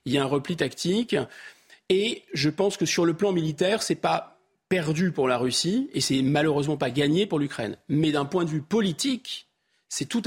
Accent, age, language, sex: French, 40-59, French, male